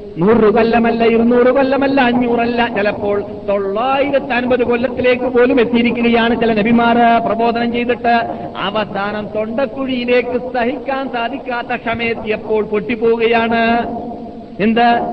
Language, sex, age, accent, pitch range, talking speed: Malayalam, male, 50-69, native, 190-240 Hz, 90 wpm